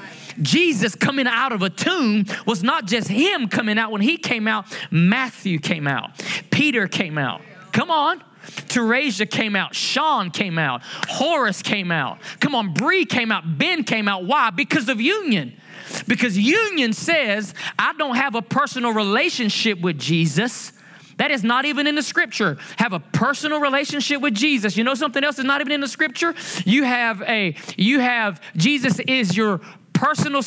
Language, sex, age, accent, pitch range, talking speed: English, male, 20-39, American, 205-290 Hz, 175 wpm